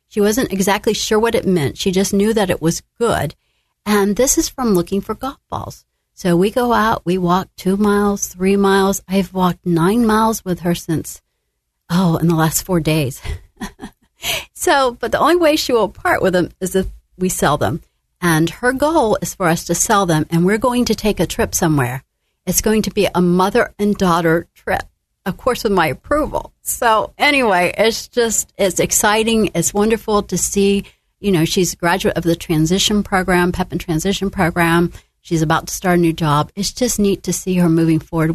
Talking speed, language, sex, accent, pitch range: 200 wpm, English, female, American, 165-205 Hz